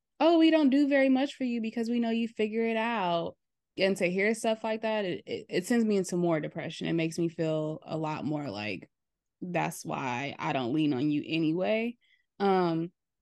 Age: 20-39